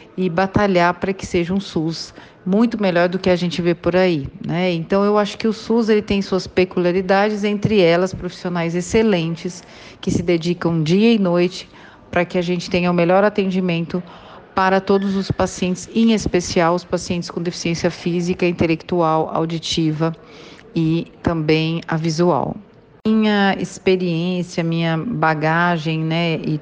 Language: Portuguese